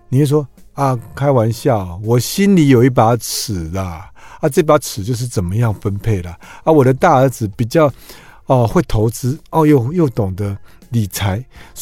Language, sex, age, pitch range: Chinese, male, 50-69, 100-145 Hz